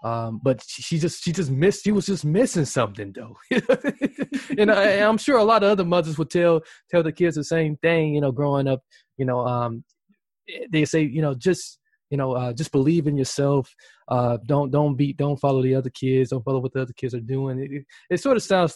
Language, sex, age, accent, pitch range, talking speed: English, male, 20-39, American, 125-155 Hz, 230 wpm